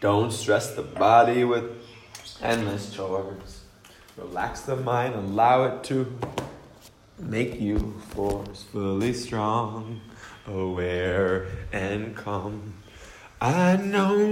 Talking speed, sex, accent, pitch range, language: 90 wpm, male, American, 100-140 Hz, English